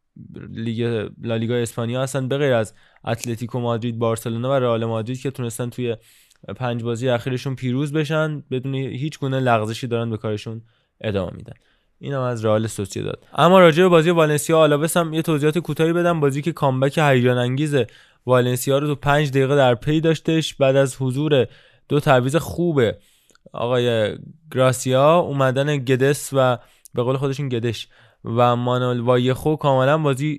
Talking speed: 155 wpm